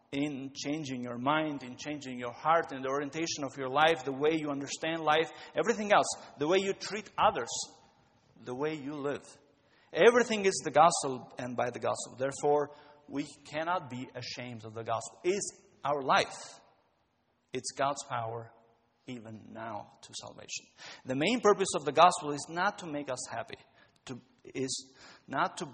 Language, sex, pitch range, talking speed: English, male, 125-165 Hz, 170 wpm